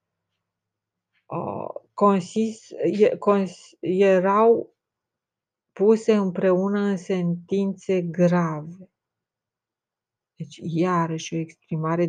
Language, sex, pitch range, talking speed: Romanian, female, 170-190 Hz, 60 wpm